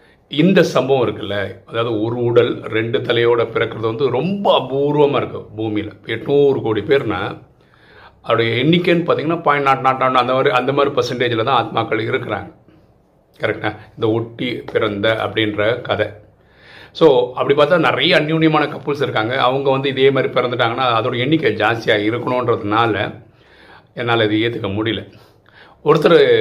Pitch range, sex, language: 110-160 Hz, male, Tamil